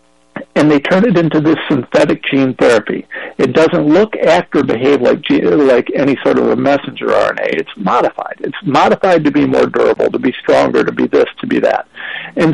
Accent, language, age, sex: American, English, 60-79, male